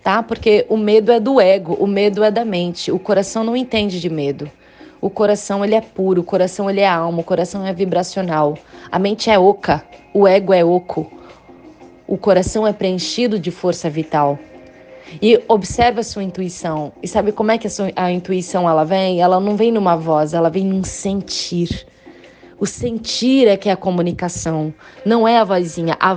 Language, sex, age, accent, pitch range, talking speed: Portuguese, female, 20-39, Brazilian, 175-215 Hz, 195 wpm